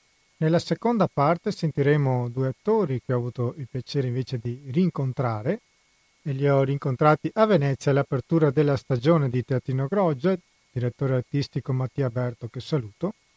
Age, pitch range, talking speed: 40-59, 130-170 Hz, 145 wpm